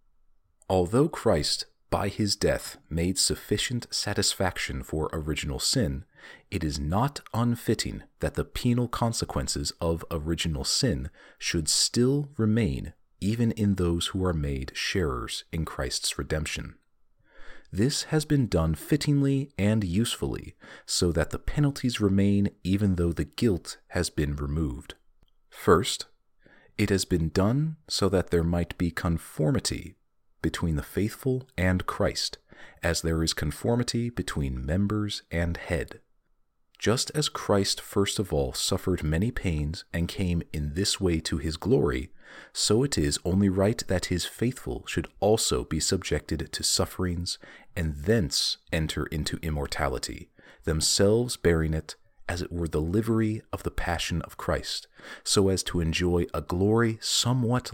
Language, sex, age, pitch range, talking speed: English, male, 40-59, 80-110 Hz, 140 wpm